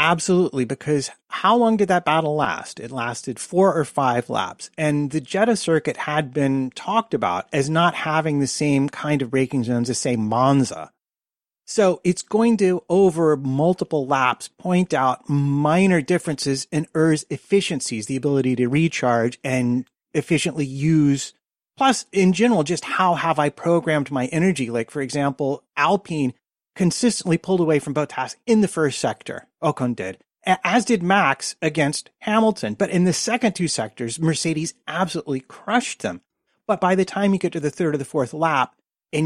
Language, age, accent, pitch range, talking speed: English, 30-49, American, 140-180 Hz, 165 wpm